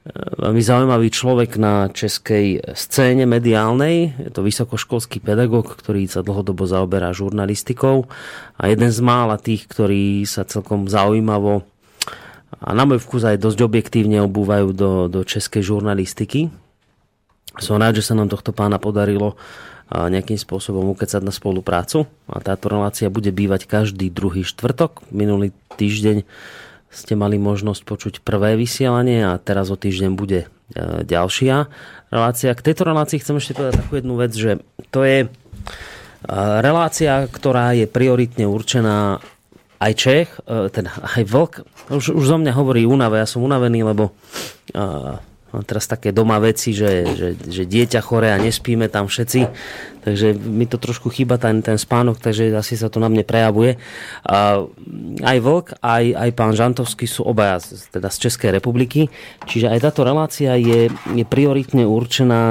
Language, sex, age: Slovak, male, 30-49